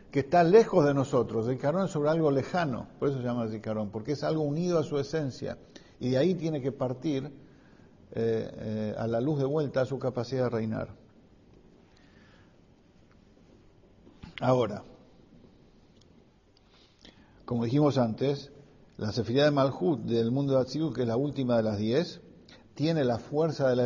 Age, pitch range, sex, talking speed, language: 50-69, 110-140 Hz, male, 165 wpm, English